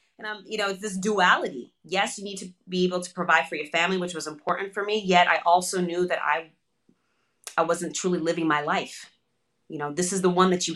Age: 20-39